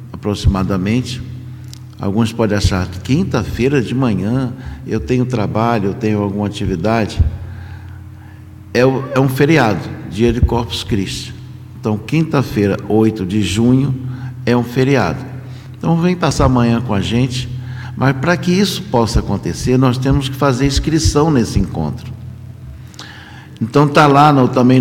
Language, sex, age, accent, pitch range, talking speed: Portuguese, male, 60-79, Brazilian, 105-130 Hz, 135 wpm